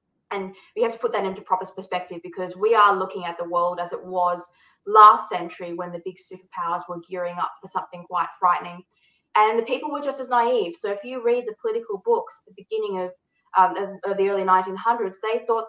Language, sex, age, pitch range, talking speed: English, female, 20-39, 180-215 Hz, 215 wpm